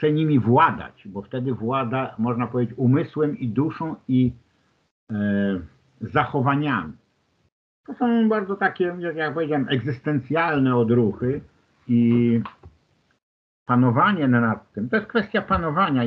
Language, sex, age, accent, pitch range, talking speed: Polish, male, 50-69, native, 120-165 Hz, 105 wpm